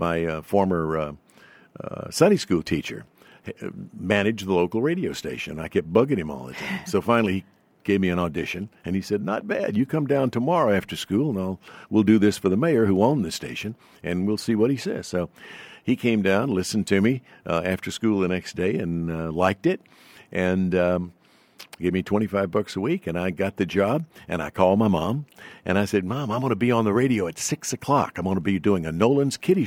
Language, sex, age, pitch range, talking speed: English, male, 60-79, 95-135 Hz, 225 wpm